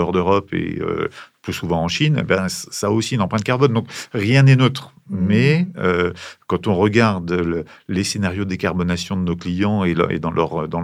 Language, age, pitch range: French, 40-59, 90-115 Hz